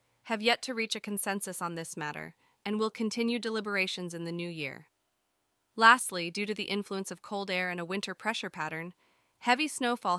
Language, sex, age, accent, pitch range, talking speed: English, female, 30-49, American, 185-220 Hz, 190 wpm